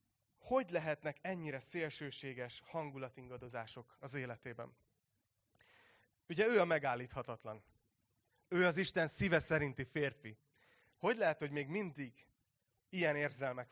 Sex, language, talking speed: male, Hungarian, 105 wpm